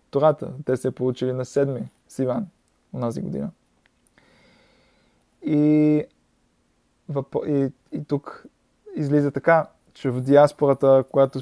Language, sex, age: Bulgarian, male, 20-39